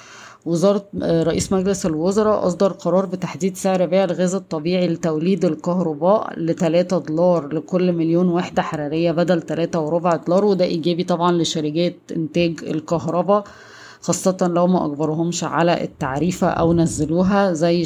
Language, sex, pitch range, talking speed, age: Arabic, female, 165-180 Hz, 130 wpm, 20-39